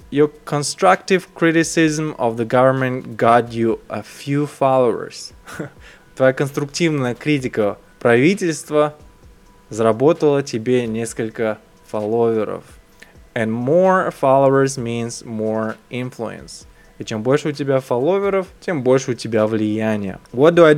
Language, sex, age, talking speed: Russian, male, 20-39, 115 wpm